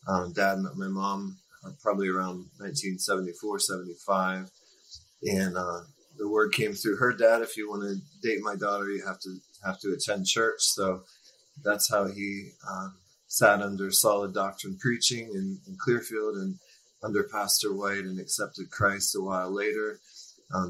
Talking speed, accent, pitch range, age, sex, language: 165 wpm, American, 95-110 Hz, 30-49, male, English